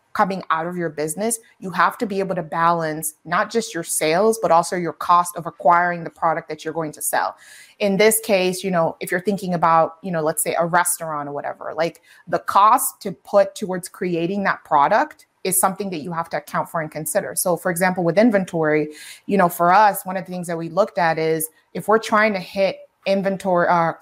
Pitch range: 165-200 Hz